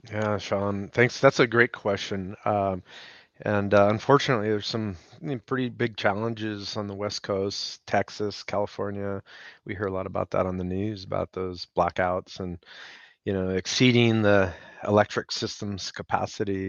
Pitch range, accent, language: 95-115 Hz, American, English